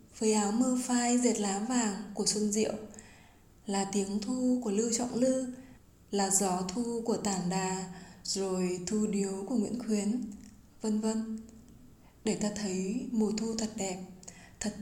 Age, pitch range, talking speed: 20-39, 195-230 Hz, 160 wpm